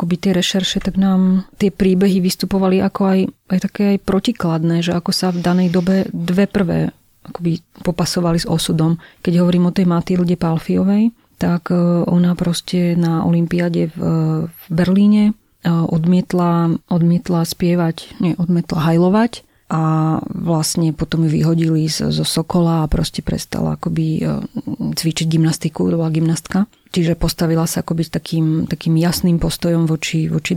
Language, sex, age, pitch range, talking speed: Slovak, female, 30-49, 165-190 Hz, 140 wpm